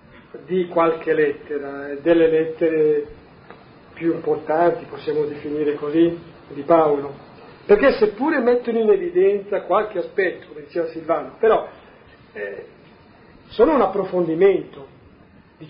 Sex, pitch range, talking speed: male, 160-195 Hz, 105 wpm